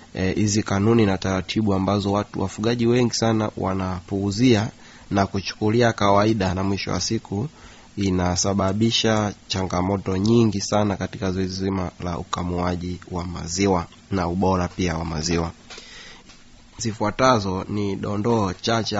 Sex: male